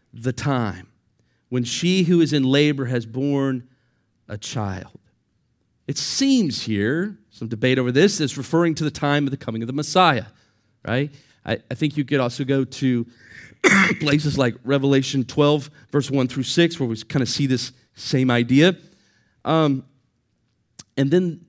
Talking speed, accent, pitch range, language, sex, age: 160 wpm, American, 115-150 Hz, English, male, 40-59